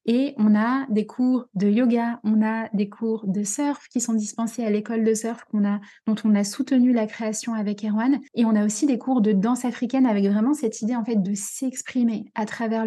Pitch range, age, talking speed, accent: 210-245 Hz, 20-39, 230 wpm, French